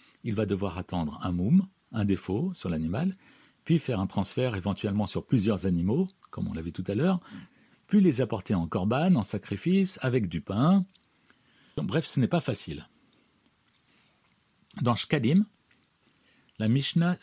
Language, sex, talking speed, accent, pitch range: French, male, 155 wpm, French, 100-150 Hz